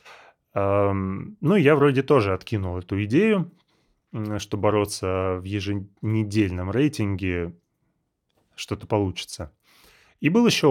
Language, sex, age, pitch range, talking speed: Russian, male, 20-39, 100-130 Hz, 95 wpm